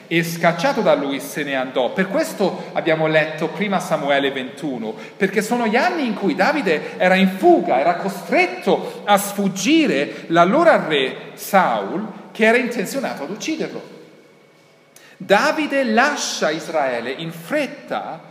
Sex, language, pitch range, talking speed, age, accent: male, Italian, 170-255 Hz, 135 wpm, 40-59, native